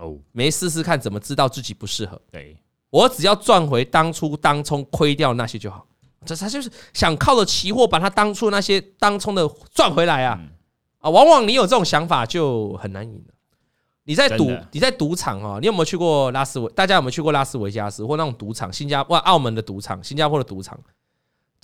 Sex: male